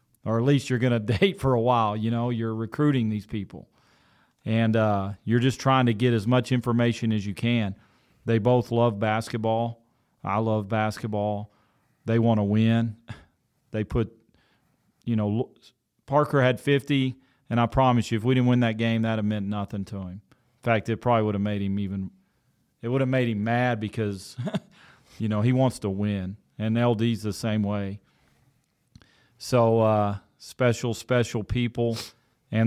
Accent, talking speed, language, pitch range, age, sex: American, 180 wpm, English, 105-120 Hz, 40-59, male